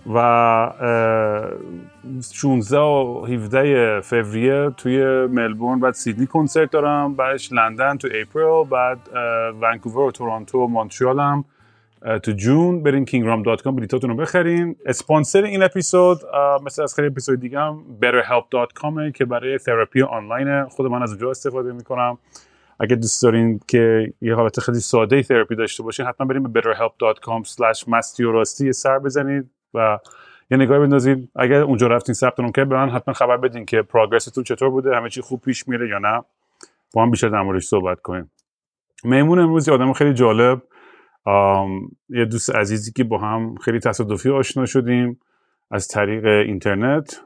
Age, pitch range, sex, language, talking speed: 30-49, 115-140 Hz, male, Persian, 145 wpm